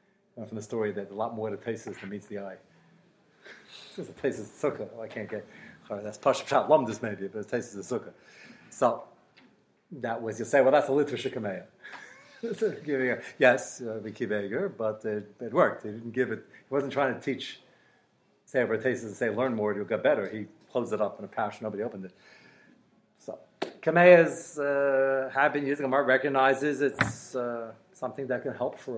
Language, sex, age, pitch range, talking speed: English, male, 40-59, 125-200 Hz, 205 wpm